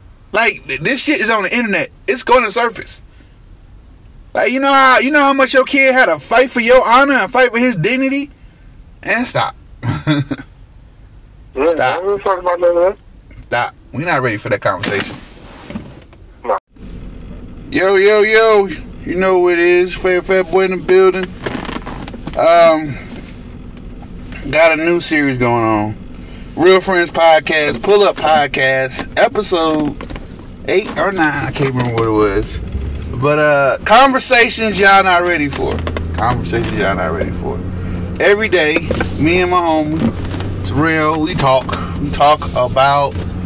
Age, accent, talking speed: 30-49, American, 145 wpm